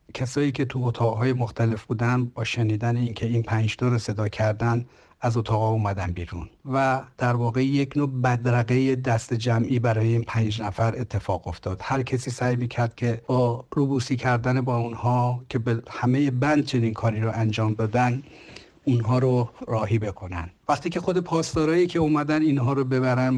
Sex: male